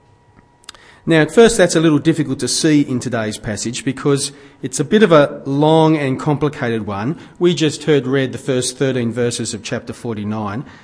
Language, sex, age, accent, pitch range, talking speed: English, male, 40-59, Australian, 125-160 Hz, 185 wpm